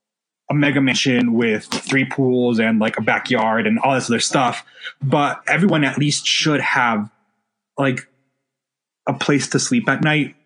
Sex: male